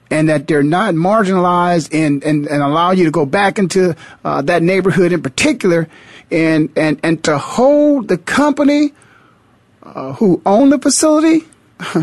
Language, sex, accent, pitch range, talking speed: English, male, American, 145-205 Hz, 155 wpm